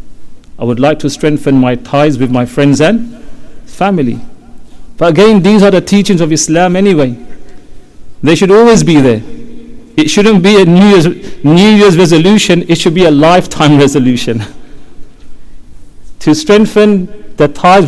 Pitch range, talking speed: 140-205 Hz, 150 wpm